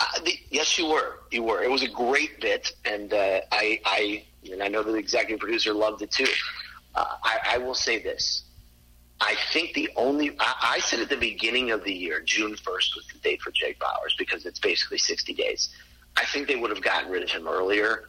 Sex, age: male, 40-59